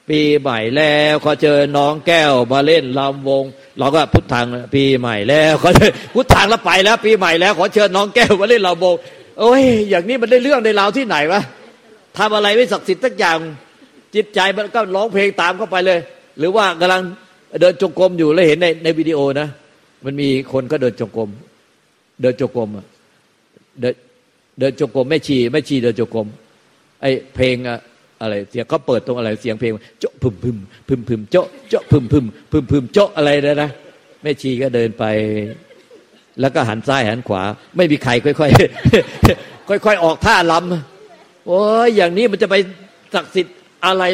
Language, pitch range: Thai, 135-190 Hz